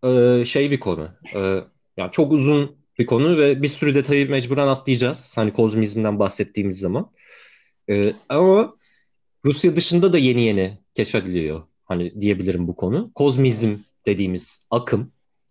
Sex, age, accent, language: male, 40-59, native, Turkish